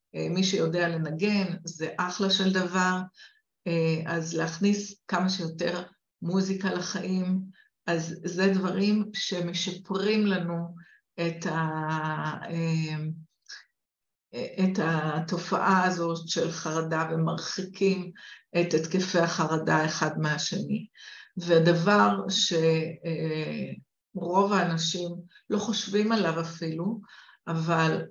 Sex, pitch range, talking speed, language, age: female, 165-190 Hz, 85 wpm, Hebrew, 50-69